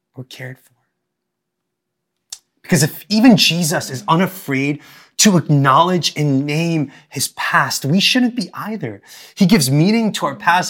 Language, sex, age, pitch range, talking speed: English, male, 30-49, 140-205 Hz, 140 wpm